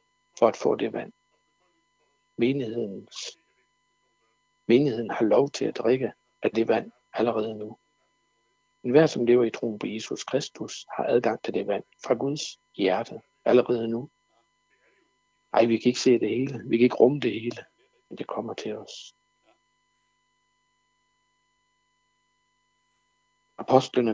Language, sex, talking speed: Danish, male, 135 wpm